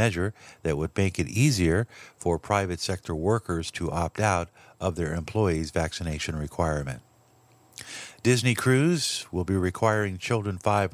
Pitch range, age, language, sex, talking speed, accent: 85-105 Hz, 50-69, English, male, 135 wpm, American